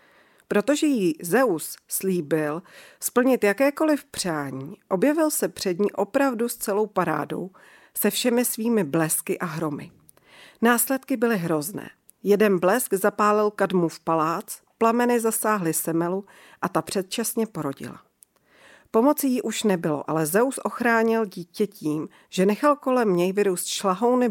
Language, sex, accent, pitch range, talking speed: Czech, female, native, 170-225 Hz, 130 wpm